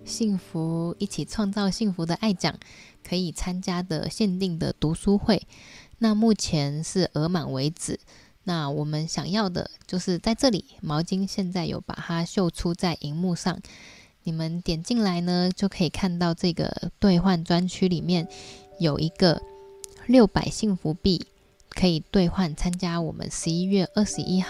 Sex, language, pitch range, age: female, Chinese, 160-195 Hz, 10-29